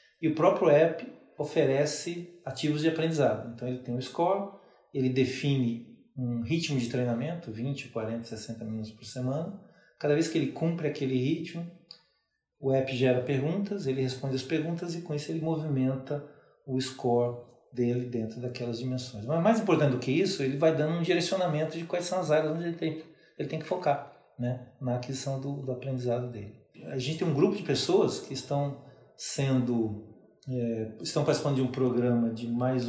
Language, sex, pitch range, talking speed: Portuguese, male, 125-160 Hz, 180 wpm